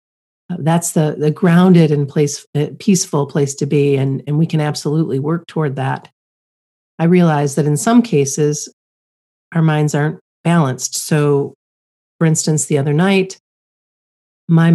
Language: English